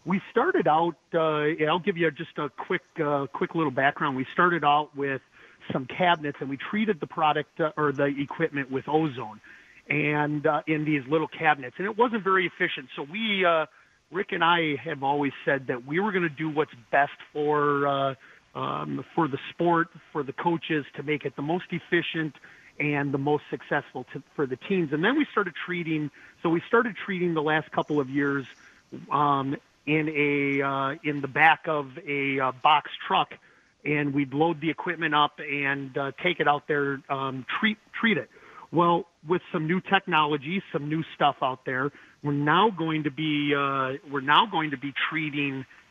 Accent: American